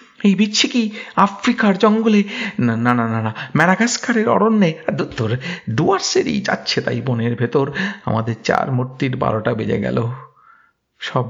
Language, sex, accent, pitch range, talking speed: Bengali, male, native, 120-160 Hz, 90 wpm